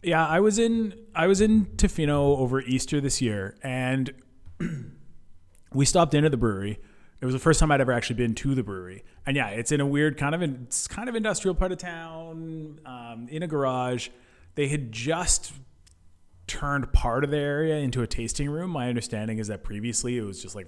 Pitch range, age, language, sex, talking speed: 105-145 Hz, 30-49, English, male, 205 wpm